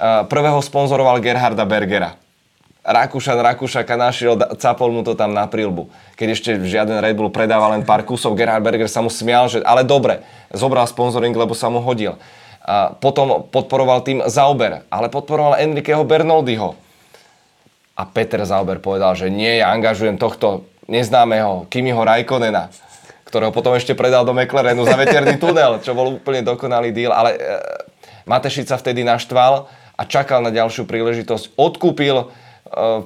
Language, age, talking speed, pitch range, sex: Czech, 20-39, 150 wpm, 110-130 Hz, male